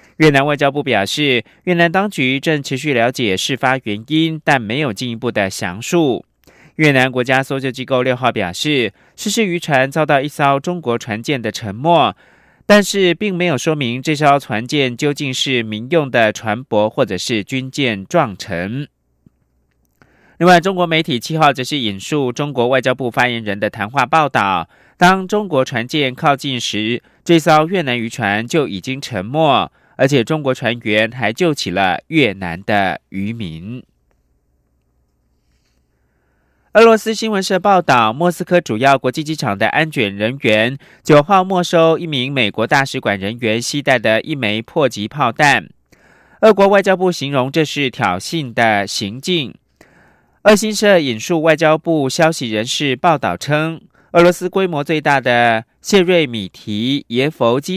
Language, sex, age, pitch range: German, male, 30-49, 110-160 Hz